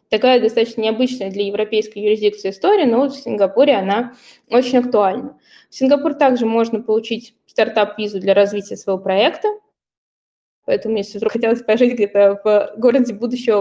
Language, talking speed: Russian, 140 wpm